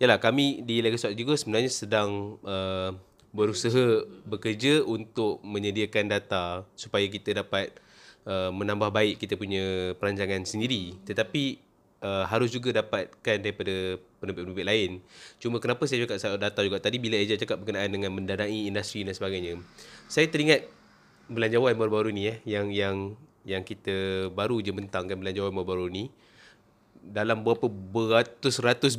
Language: Malay